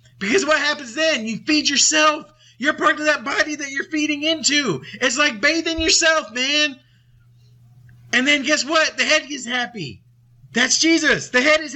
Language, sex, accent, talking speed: English, male, American, 175 wpm